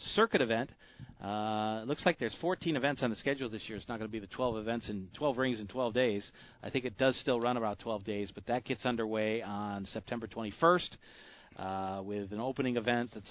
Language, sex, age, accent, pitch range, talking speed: English, male, 40-59, American, 105-130 Hz, 220 wpm